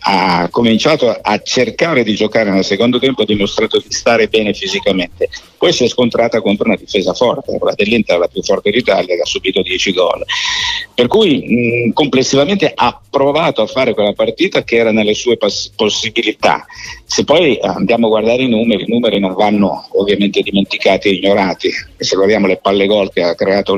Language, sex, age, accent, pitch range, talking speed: Italian, male, 50-69, native, 105-175 Hz, 185 wpm